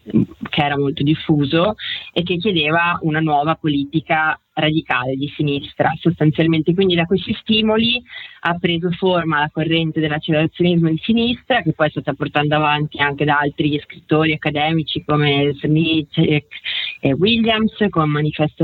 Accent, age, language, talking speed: native, 30-49, Italian, 140 wpm